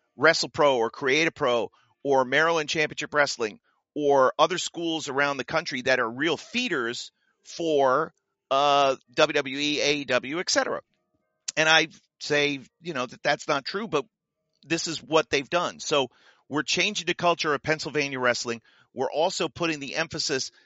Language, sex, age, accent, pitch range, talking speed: English, male, 40-59, American, 140-170 Hz, 150 wpm